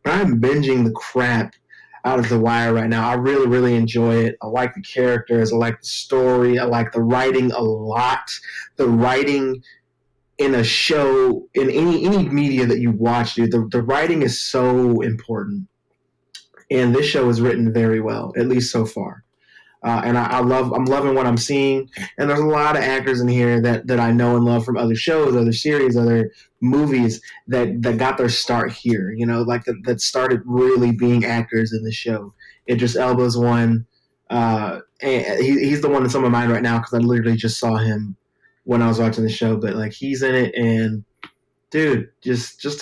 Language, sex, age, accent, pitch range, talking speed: English, male, 20-39, American, 115-130 Hz, 205 wpm